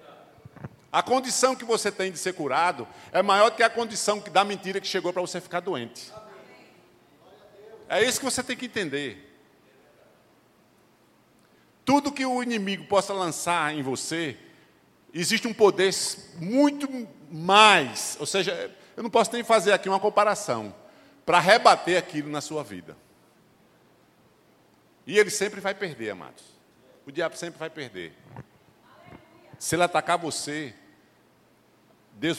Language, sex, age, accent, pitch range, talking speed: Portuguese, male, 50-69, Brazilian, 135-195 Hz, 135 wpm